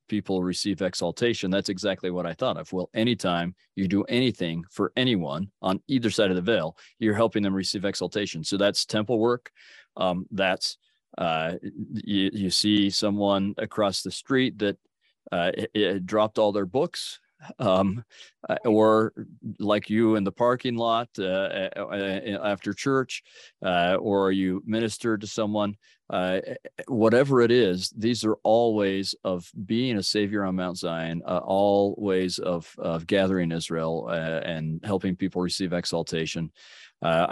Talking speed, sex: 150 wpm, male